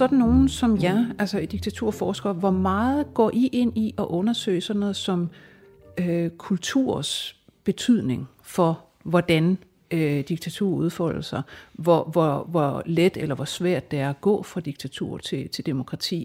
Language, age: Danish, 60-79